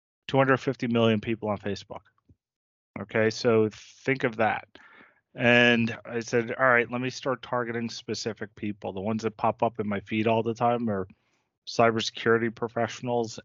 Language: English